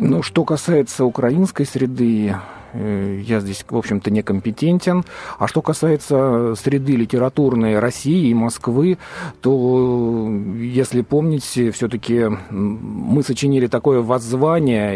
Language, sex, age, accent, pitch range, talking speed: Russian, male, 40-59, native, 120-175 Hz, 110 wpm